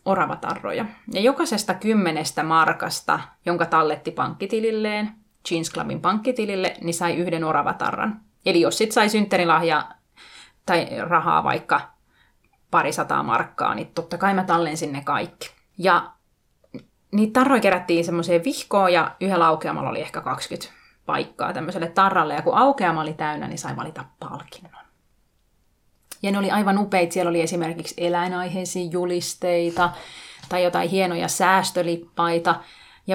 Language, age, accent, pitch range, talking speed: Finnish, 30-49, native, 170-205 Hz, 130 wpm